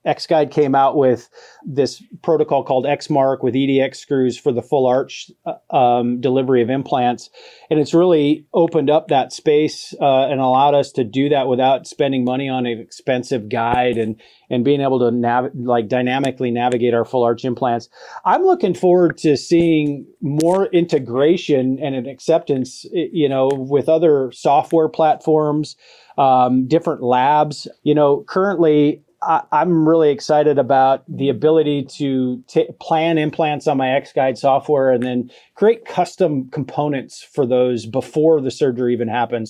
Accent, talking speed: American, 155 wpm